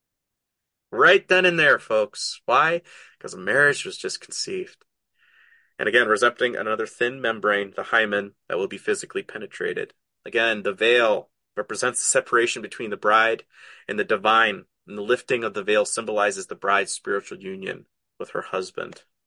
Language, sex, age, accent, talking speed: English, male, 30-49, American, 160 wpm